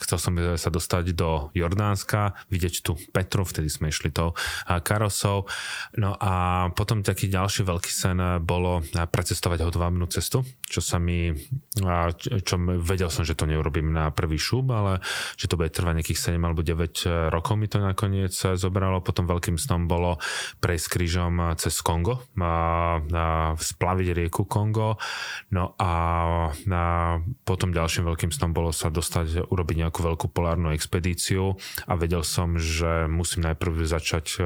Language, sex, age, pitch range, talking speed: Slovak, male, 20-39, 85-95 Hz, 145 wpm